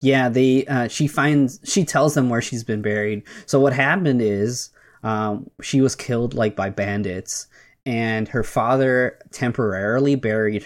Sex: male